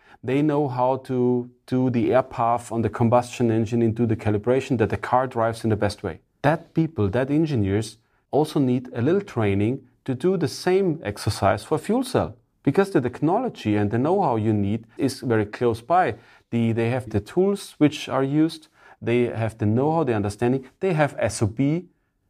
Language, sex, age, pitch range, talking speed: English, male, 30-49, 110-130 Hz, 185 wpm